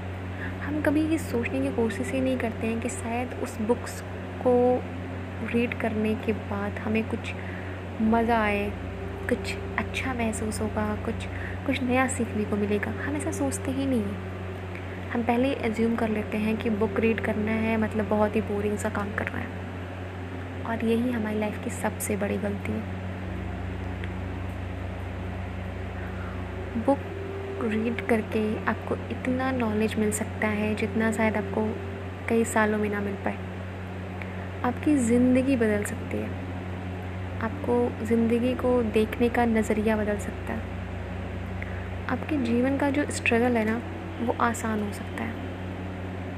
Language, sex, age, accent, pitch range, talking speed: Hindi, female, 20-39, native, 90-125 Hz, 140 wpm